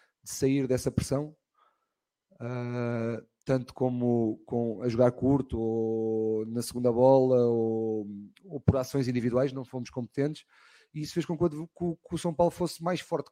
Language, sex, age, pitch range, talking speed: Portuguese, male, 30-49, 120-140 Hz, 150 wpm